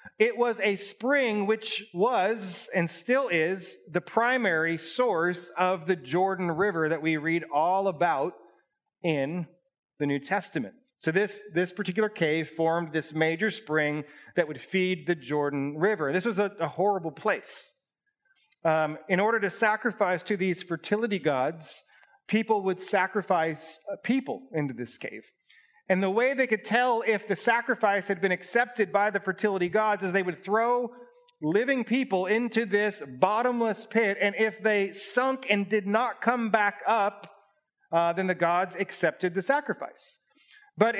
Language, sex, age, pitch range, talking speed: English, male, 30-49, 175-225 Hz, 155 wpm